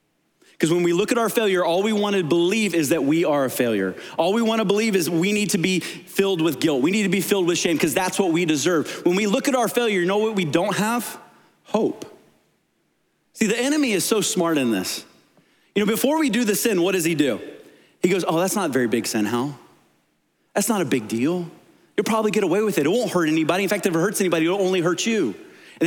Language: English